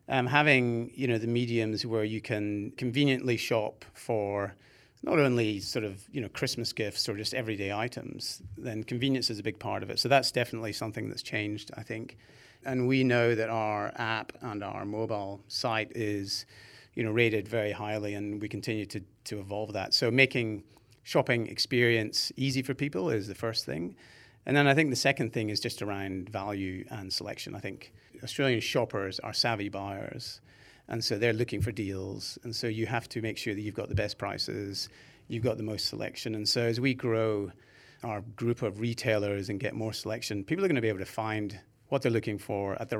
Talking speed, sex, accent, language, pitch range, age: 200 wpm, male, British, English, 105-120 Hz, 30-49